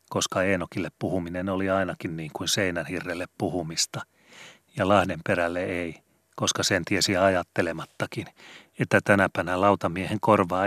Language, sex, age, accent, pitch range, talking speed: Finnish, male, 40-59, native, 85-100 Hz, 120 wpm